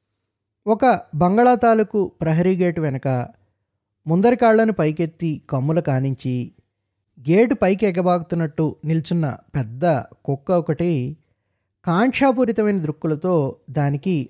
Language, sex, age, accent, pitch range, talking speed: English, male, 20-39, Indian, 105-175 Hz, 80 wpm